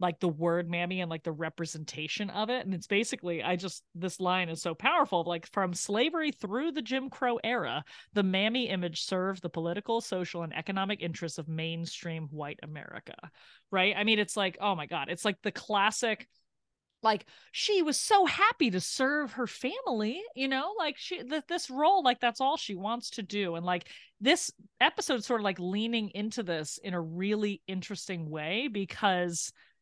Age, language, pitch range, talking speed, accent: 30-49, English, 170-215 Hz, 185 wpm, American